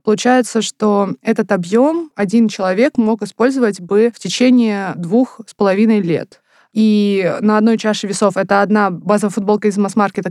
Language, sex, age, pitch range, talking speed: Russian, female, 20-39, 190-225 Hz, 150 wpm